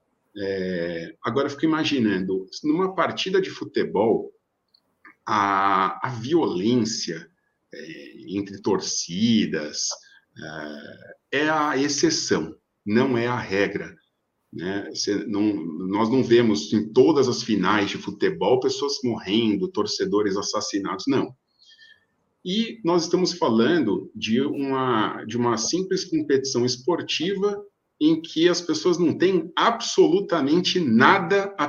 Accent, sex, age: Brazilian, male, 50-69